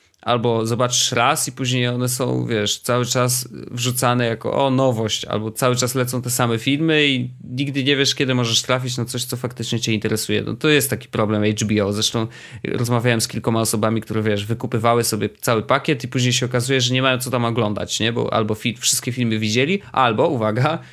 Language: Polish